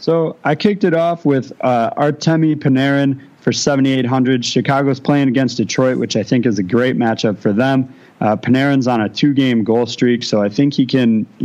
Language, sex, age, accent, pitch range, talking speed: English, male, 30-49, American, 115-130 Hz, 195 wpm